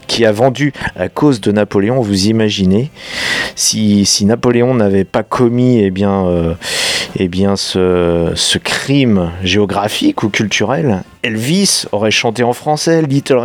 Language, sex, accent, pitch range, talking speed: French, male, French, 95-120 Hz, 145 wpm